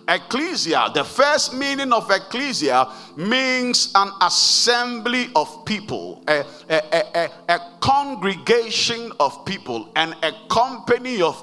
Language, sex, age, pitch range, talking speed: English, male, 50-69, 185-255 Hz, 105 wpm